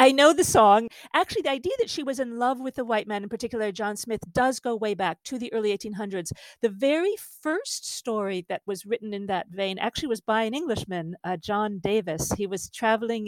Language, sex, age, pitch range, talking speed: English, female, 50-69, 180-240 Hz, 220 wpm